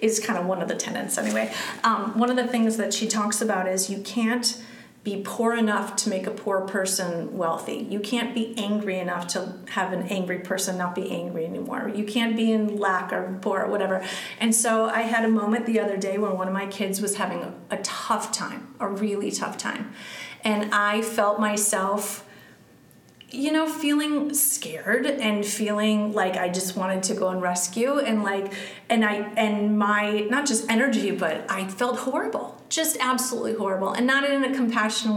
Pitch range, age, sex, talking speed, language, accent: 195-230 Hz, 30-49, female, 195 wpm, English, American